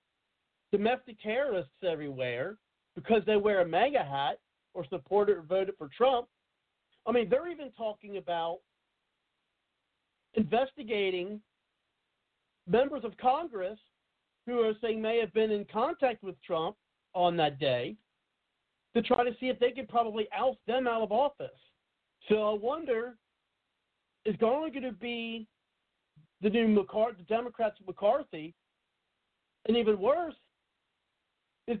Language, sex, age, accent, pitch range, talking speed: English, male, 50-69, American, 170-235 Hz, 130 wpm